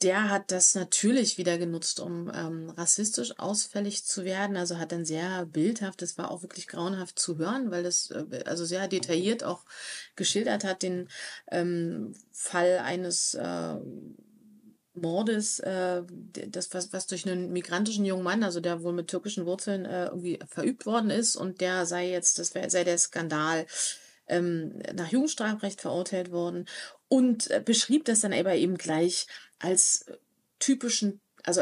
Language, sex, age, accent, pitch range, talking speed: German, female, 30-49, German, 180-220 Hz, 160 wpm